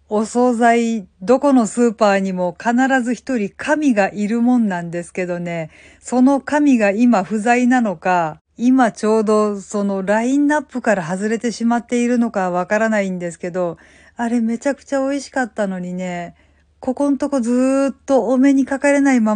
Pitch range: 190-240 Hz